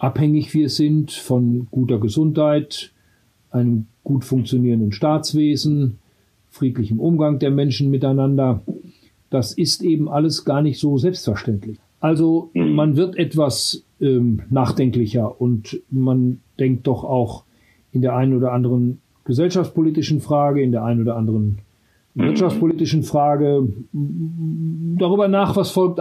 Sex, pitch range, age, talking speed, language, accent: male, 125-155 Hz, 50-69, 120 wpm, German, German